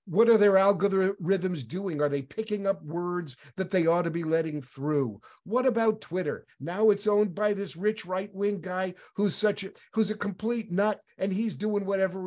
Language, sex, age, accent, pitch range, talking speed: English, male, 50-69, American, 155-210 Hz, 195 wpm